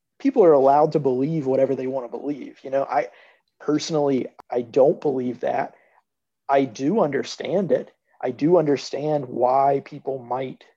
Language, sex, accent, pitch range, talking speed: English, male, American, 135-170 Hz, 155 wpm